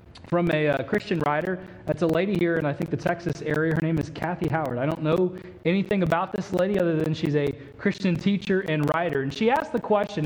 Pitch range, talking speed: 150-205 Hz, 235 wpm